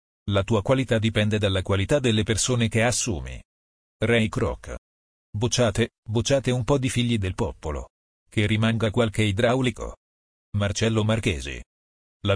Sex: male